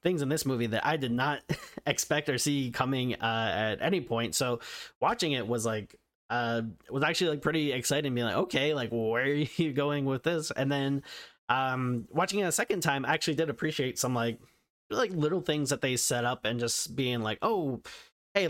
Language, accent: English, American